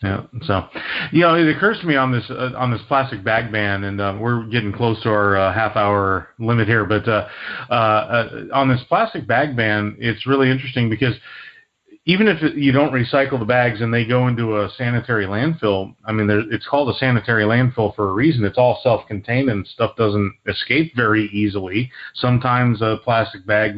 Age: 40-59